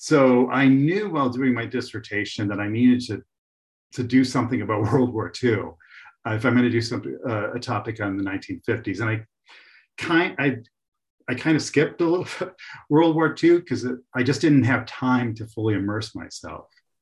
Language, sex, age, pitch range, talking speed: English, male, 40-59, 110-130 Hz, 190 wpm